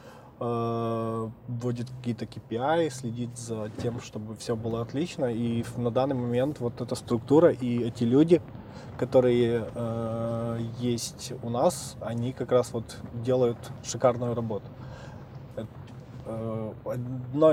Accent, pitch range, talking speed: native, 115-130 Hz, 110 wpm